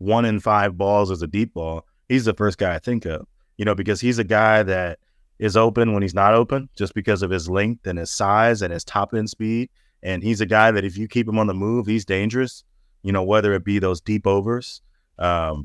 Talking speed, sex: 245 wpm, male